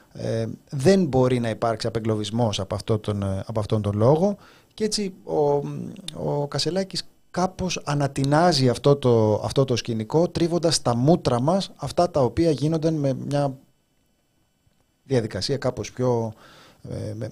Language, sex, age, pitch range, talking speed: Greek, male, 30-49, 110-150 Hz, 120 wpm